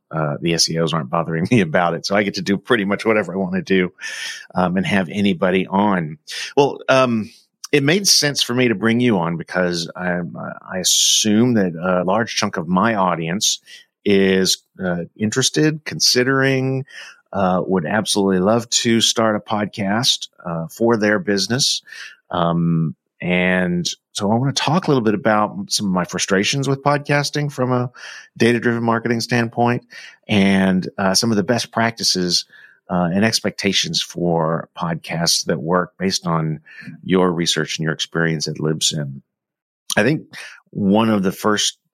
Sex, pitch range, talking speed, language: male, 90-115 Hz, 160 wpm, English